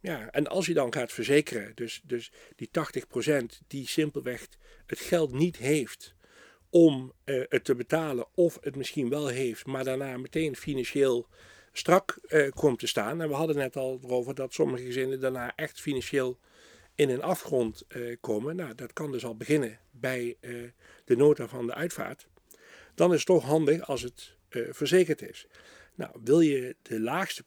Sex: male